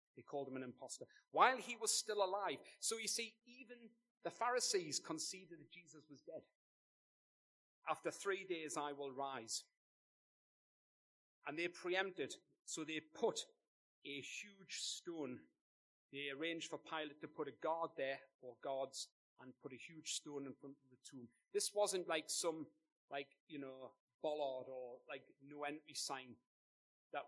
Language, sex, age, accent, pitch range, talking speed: English, male, 40-59, British, 125-165 Hz, 155 wpm